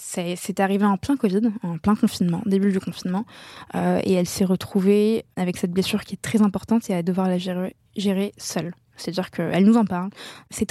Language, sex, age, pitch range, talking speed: French, female, 20-39, 190-225 Hz, 205 wpm